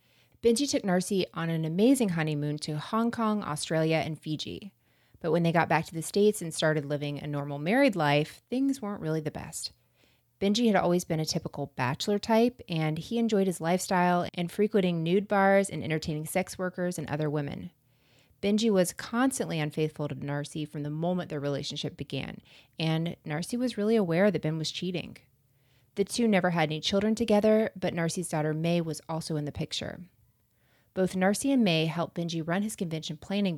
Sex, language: female, English